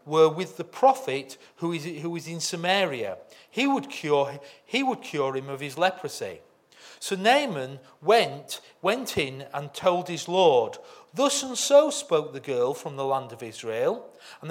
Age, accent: 40-59, British